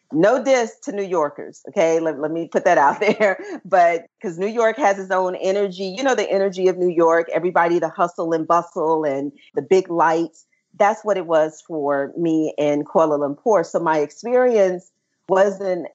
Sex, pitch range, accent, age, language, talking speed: female, 155-205 Hz, American, 40-59, English, 190 wpm